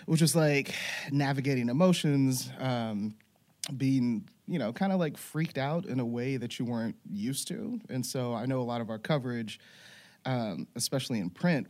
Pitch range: 110-140 Hz